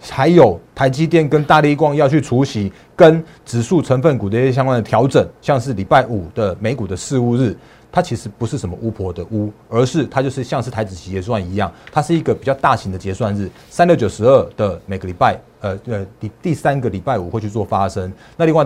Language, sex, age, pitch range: Chinese, male, 30-49, 100-135 Hz